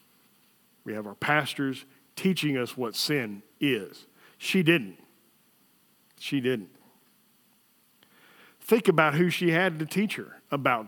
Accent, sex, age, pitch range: American, male, 50-69, 125-175 Hz